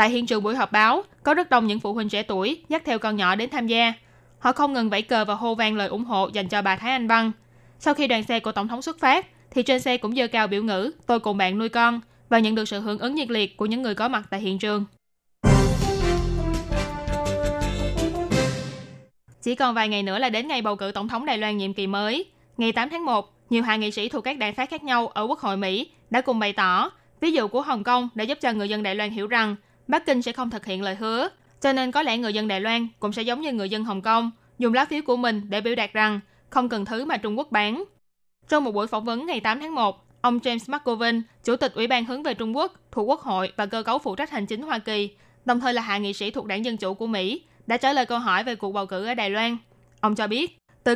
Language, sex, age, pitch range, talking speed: Vietnamese, female, 20-39, 205-250 Hz, 270 wpm